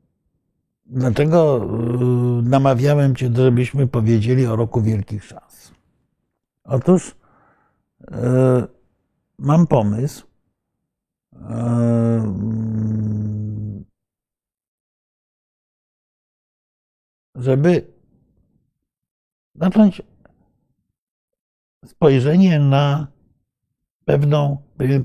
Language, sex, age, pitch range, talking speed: Polish, male, 60-79, 120-160 Hz, 40 wpm